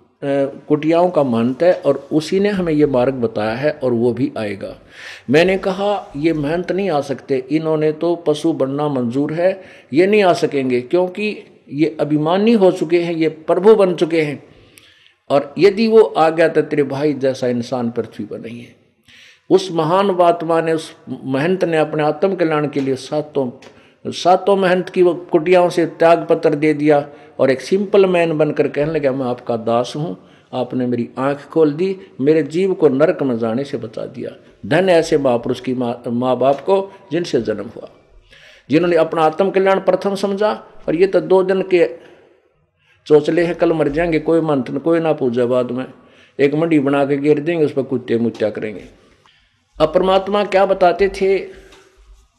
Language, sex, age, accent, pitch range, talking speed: Hindi, male, 50-69, native, 135-180 Hz, 175 wpm